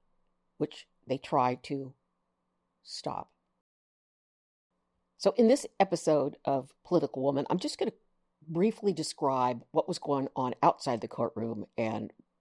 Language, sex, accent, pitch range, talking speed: English, female, American, 115-155 Hz, 125 wpm